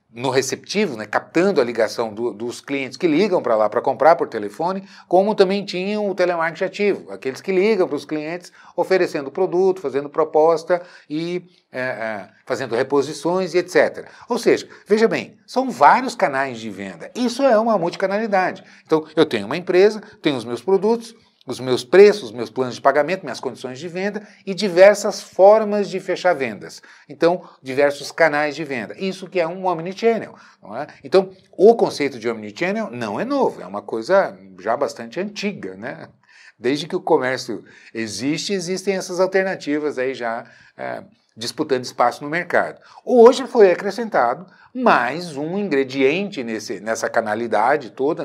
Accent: Brazilian